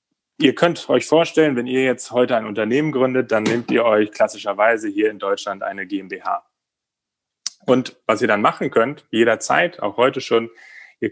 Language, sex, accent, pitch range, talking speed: German, male, German, 105-130 Hz, 175 wpm